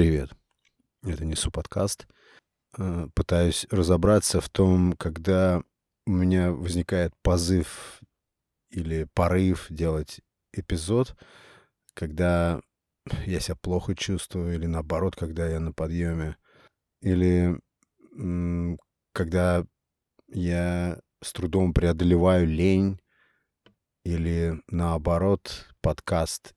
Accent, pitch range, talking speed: native, 80-95 Hz, 85 wpm